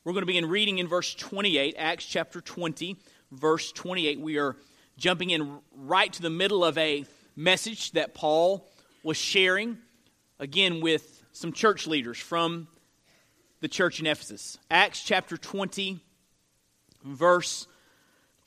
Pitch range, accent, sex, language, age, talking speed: 150-190 Hz, American, male, English, 30-49, 135 wpm